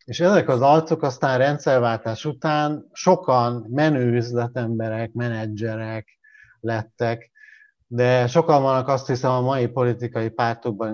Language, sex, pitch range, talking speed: Hungarian, male, 110-140 Hz, 110 wpm